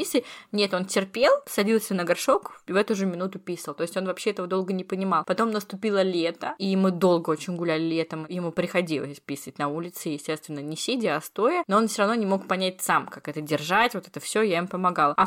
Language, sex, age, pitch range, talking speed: Russian, female, 20-39, 165-200 Hz, 225 wpm